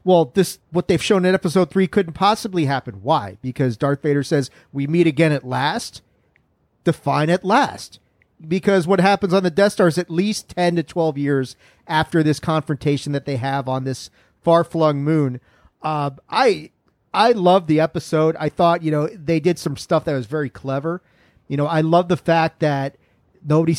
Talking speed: 190 wpm